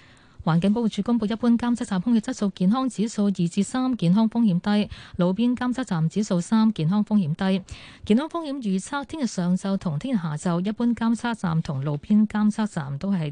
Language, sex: Chinese, female